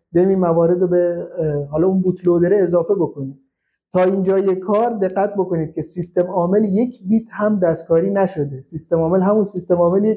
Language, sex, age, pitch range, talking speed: Persian, male, 50-69, 160-205 Hz, 165 wpm